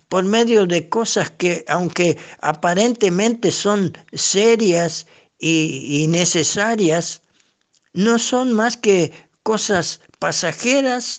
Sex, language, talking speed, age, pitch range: male, Spanish, 90 wpm, 60-79, 155-205 Hz